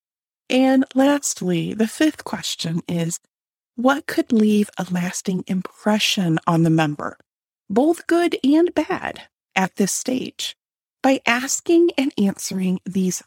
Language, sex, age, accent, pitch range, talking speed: English, female, 30-49, American, 185-265 Hz, 120 wpm